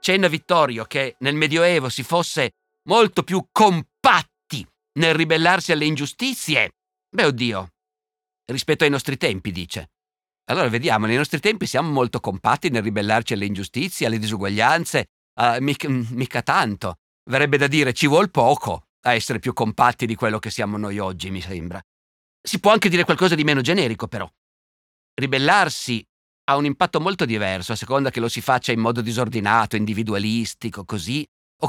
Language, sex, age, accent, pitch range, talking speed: Italian, male, 50-69, native, 115-175 Hz, 160 wpm